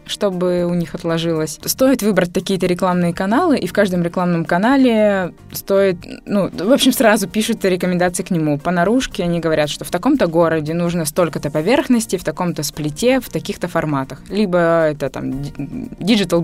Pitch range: 160-200 Hz